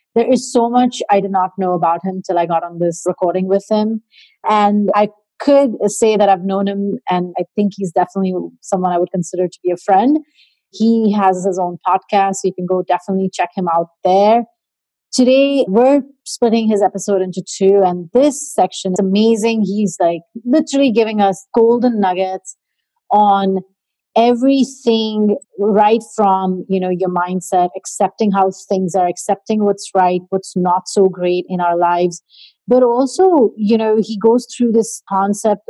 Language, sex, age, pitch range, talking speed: English, female, 30-49, 185-230 Hz, 175 wpm